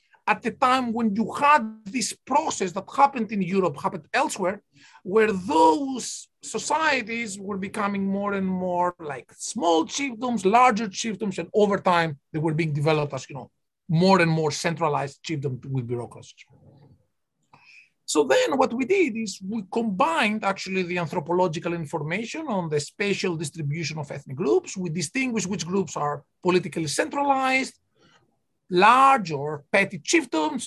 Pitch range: 155-220 Hz